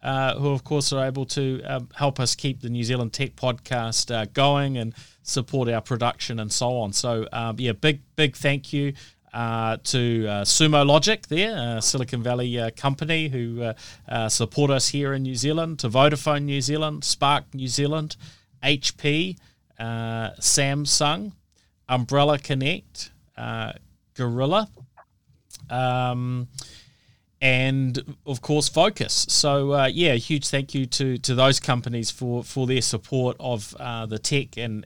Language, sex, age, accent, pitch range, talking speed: English, male, 30-49, Australian, 115-140 Hz, 155 wpm